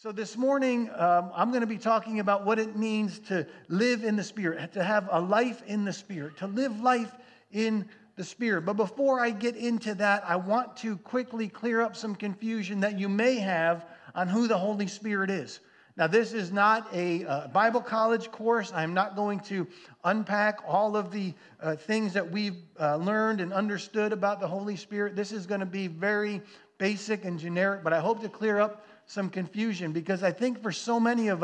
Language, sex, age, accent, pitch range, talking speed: English, male, 40-59, American, 190-225 Hz, 205 wpm